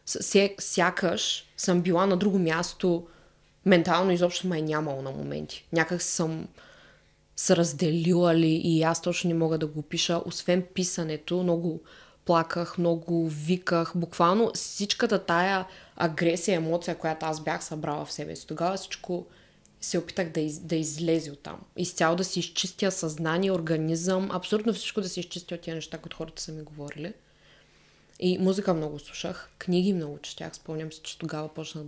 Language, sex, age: Bulgarian, female, 20-39